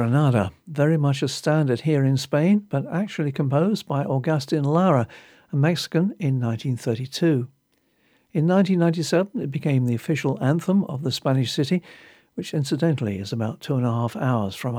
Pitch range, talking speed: 125-165 Hz, 160 wpm